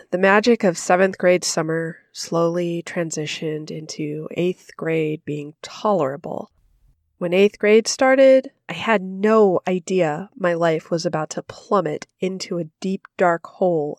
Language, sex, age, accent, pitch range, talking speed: English, female, 20-39, American, 165-205 Hz, 135 wpm